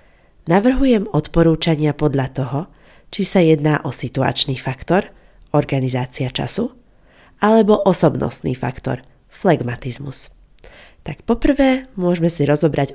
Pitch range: 140-185 Hz